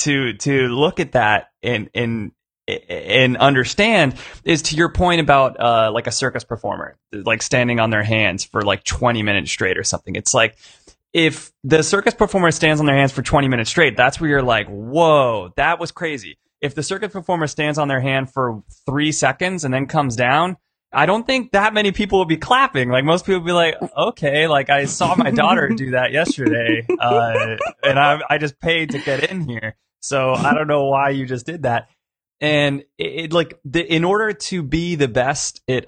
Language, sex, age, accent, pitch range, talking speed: English, male, 20-39, American, 120-160 Hz, 205 wpm